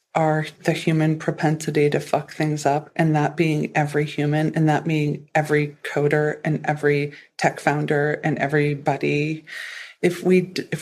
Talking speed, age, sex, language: 150 wpm, 40-59, female, English